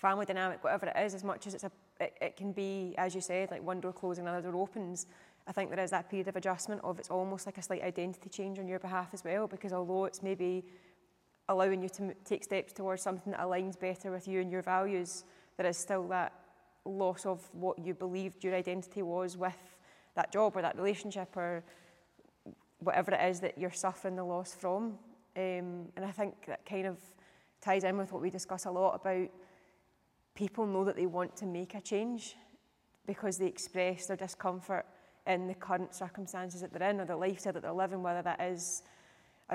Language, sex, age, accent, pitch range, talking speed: English, female, 20-39, British, 180-195 Hz, 210 wpm